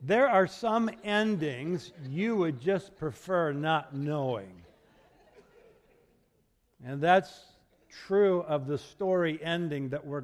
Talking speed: 110 wpm